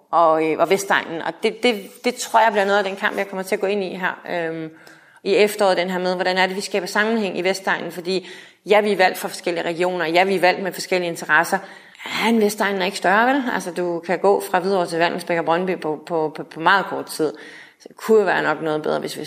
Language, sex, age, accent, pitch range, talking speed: Danish, female, 30-49, native, 165-205 Hz, 255 wpm